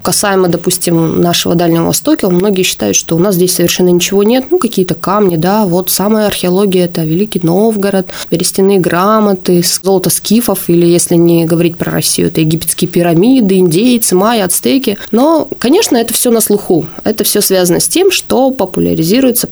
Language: Russian